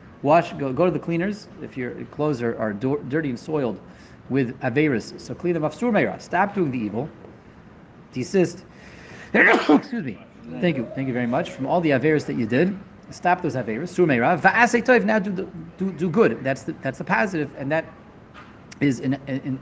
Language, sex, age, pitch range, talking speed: English, male, 30-49, 130-175 Hz, 180 wpm